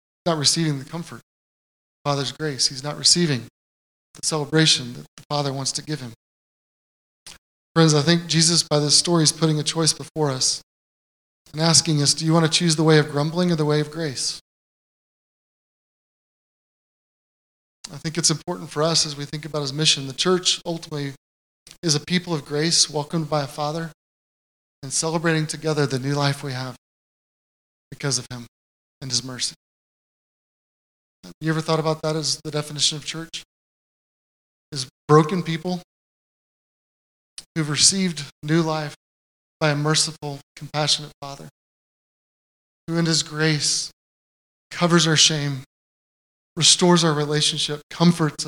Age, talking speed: 30-49, 145 wpm